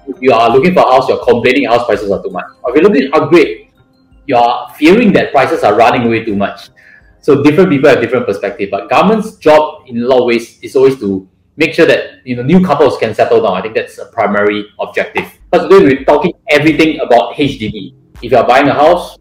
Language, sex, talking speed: English, male, 235 wpm